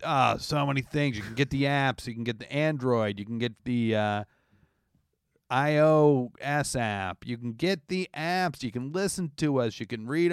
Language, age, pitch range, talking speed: English, 40-59, 105-155 Hz, 200 wpm